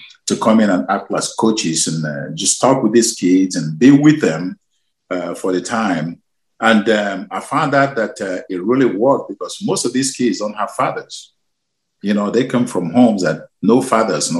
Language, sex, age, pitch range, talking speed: English, male, 50-69, 90-120 Hz, 210 wpm